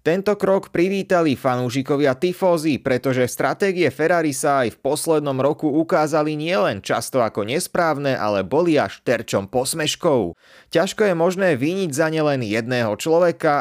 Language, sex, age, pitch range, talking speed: Slovak, male, 30-49, 130-170 Hz, 130 wpm